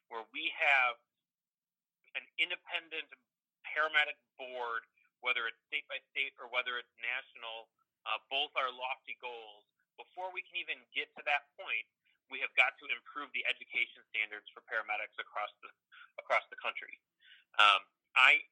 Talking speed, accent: 145 wpm, American